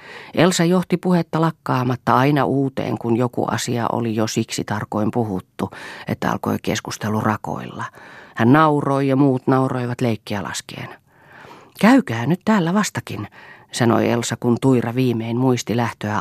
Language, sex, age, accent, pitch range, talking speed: Finnish, female, 40-59, native, 115-145 Hz, 135 wpm